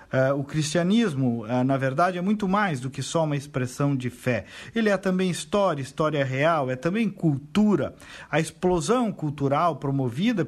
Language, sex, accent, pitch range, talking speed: Portuguese, male, Brazilian, 135-185 Hz, 155 wpm